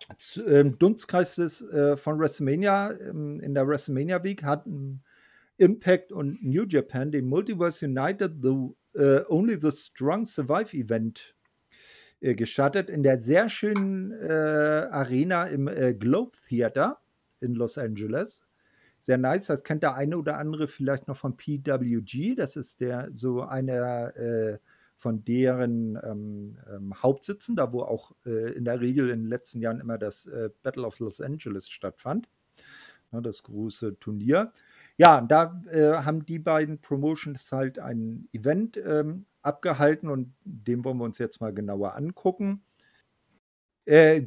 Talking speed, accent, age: 145 wpm, German, 50-69